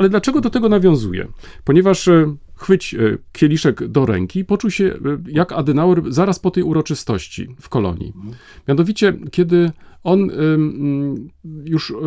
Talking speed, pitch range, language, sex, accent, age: 120 wpm, 125-185 Hz, Polish, male, native, 40-59